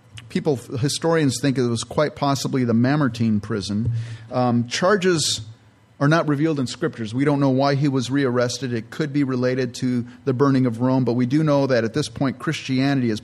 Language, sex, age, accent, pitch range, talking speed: English, male, 40-59, American, 115-140 Hz, 195 wpm